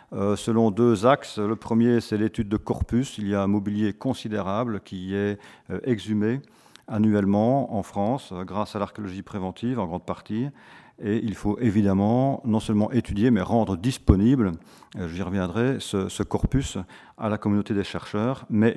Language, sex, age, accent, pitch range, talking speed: French, male, 40-59, French, 100-115 Hz, 155 wpm